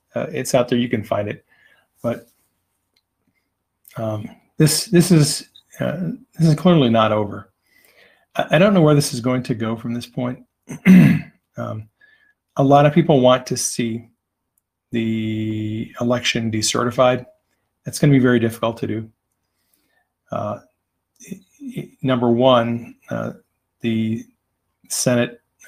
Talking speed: 140 wpm